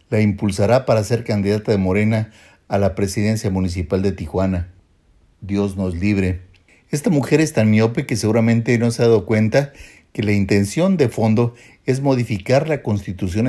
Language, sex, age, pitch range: Spanish, male, 50-69, 100-125 Hz